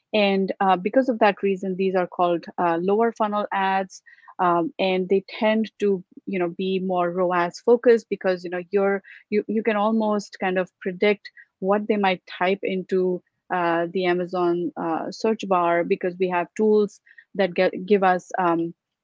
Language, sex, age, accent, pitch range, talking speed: English, female, 30-49, Indian, 175-205 Hz, 175 wpm